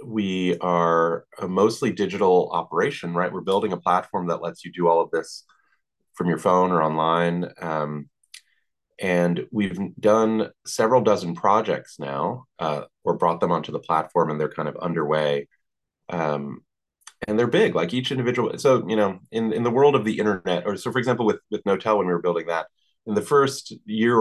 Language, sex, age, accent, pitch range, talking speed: English, male, 30-49, American, 80-105 Hz, 190 wpm